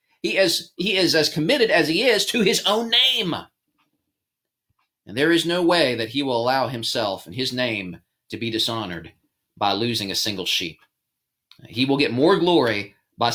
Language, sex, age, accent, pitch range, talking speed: English, male, 30-49, American, 105-135 Hz, 180 wpm